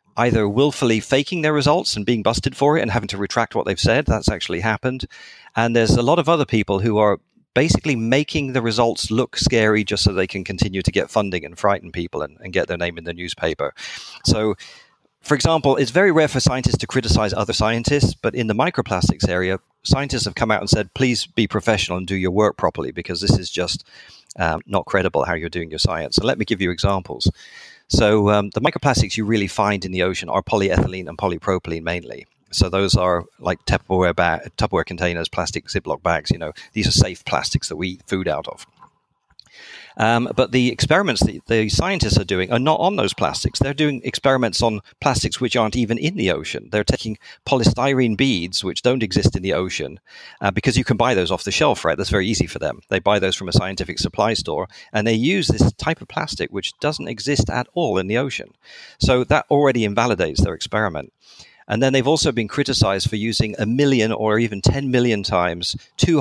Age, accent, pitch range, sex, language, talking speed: 40-59, British, 95-130 Hz, male, English, 215 wpm